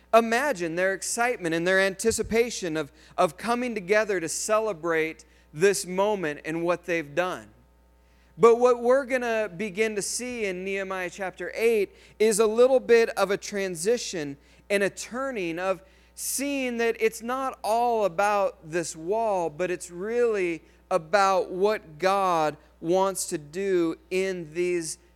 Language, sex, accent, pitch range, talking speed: English, male, American, 165-215 Hz, 145 wpm